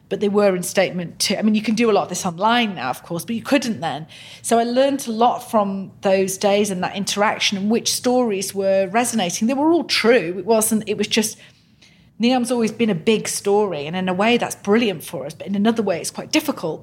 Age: 40-59